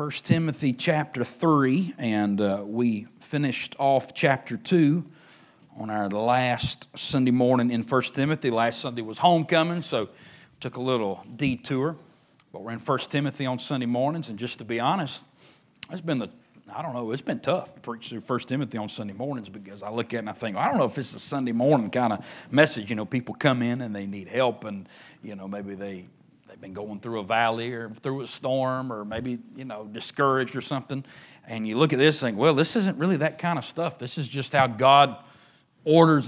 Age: 40-59